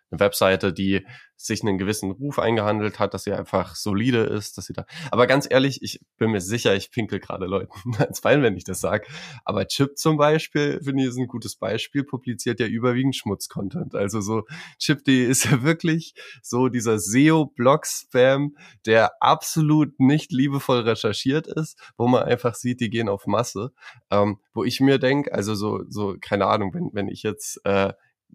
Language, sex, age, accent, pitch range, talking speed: German, male, 20-39, German, 100-130 Hz, 185 wpm